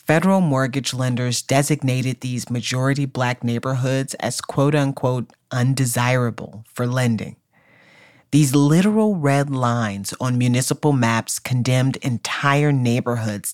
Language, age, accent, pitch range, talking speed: English, 40-59, American, 120-140 Hz, 100 wpm